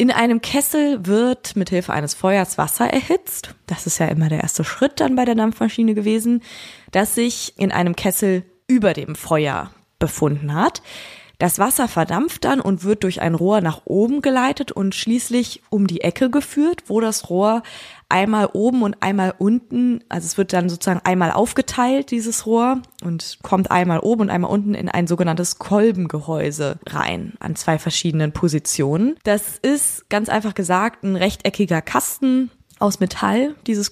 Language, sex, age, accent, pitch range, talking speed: German, female, 20-39, German, 175-230 Hz, 165 wpm